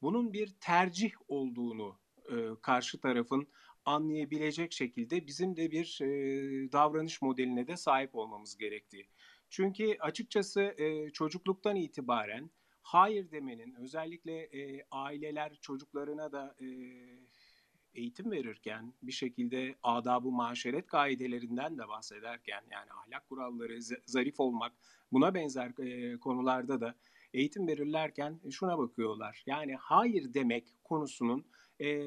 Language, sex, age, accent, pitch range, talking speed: Turkish, male, 40-59, native, 125-155 Hz, 115 wpm